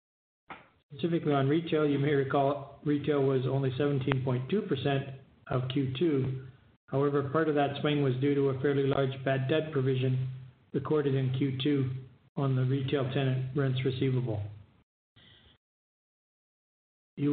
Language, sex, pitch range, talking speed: English, male, 130-145 Hz, 125 wpm